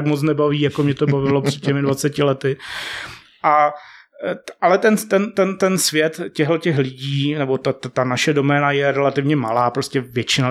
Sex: male